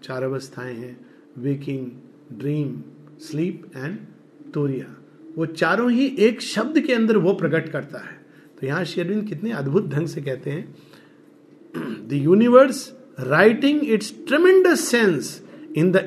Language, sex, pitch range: Hindi, male, 140-220 Hz